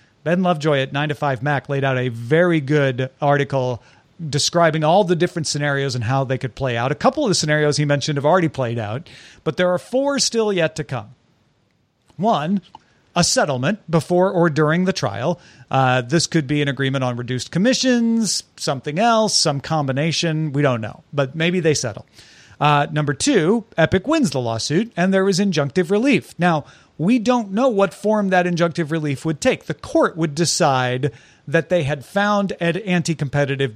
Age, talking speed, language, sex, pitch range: 40-59, 180 wpm, English, male, 140-185 Hz